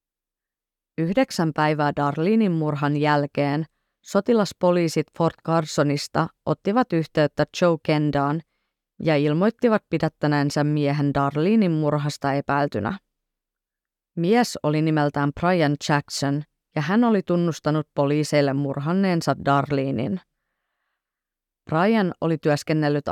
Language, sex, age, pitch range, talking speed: Finnish, female, 30-49, 145-175 Hz, 90 wpm